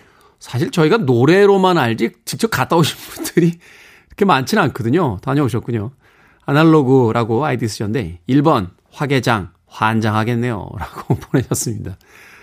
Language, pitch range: Korean, 110-155 Hz